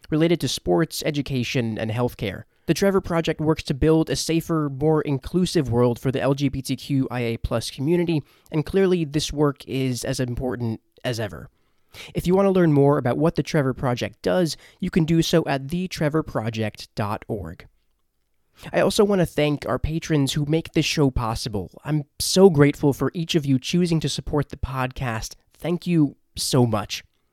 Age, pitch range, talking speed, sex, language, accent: 20-39, 130-170 Hz, 165 wpm, male, English, American